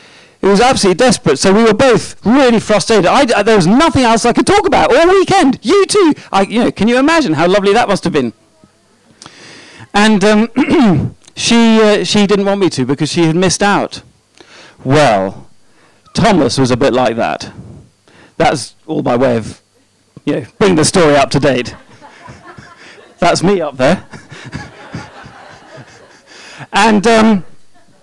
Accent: British